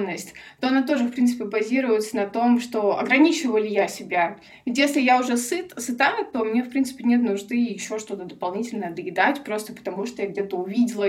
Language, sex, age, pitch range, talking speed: Russian, female, 20-39, 215-255 Hz, 185 wpm